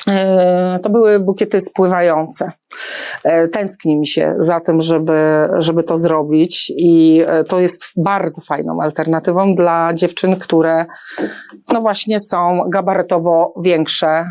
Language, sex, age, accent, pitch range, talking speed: Polish, female, 40-59, native, 180-200 Hz, 115 wpm